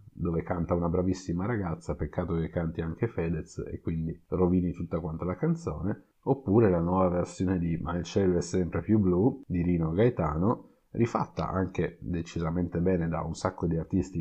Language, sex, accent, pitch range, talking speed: Italian, male, native, 85-100 Hz, 175 wpm